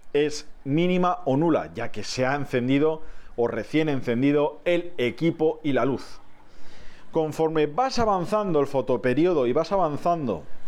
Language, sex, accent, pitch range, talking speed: Spanish, male, Spanish, 135-180 Hz, 140 wpm